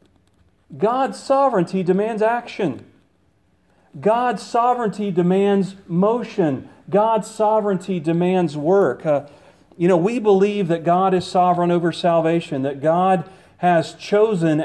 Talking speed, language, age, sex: 110 wpm, English, 40-59, male